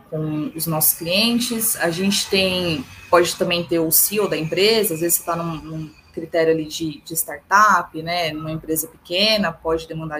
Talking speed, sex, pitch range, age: 180 wpm, female, 170-205 Hz, 20-39